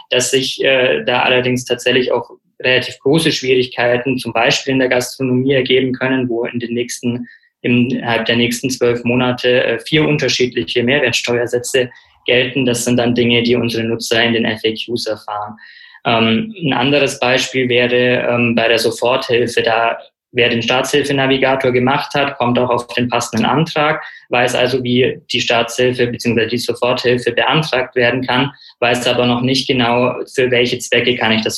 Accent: German